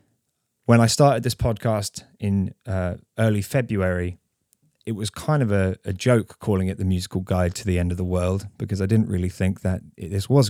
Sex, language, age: male, English, 20-39